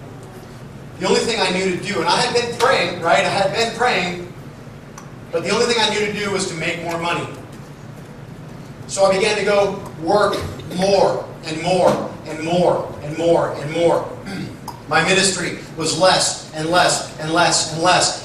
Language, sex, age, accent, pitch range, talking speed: English, male, 40-59, American, 140-235 Hz, 180 wpm